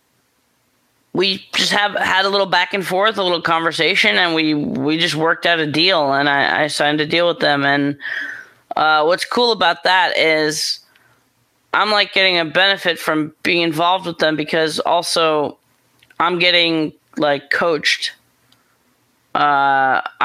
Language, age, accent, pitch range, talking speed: English, 20-39, American, 150-175 Hz, 155 wpm